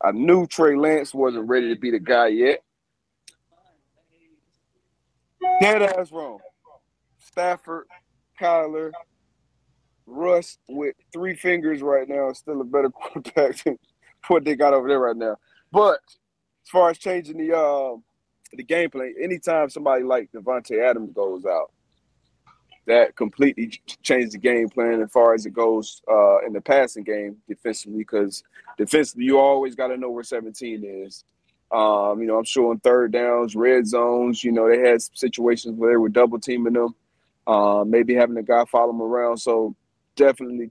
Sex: male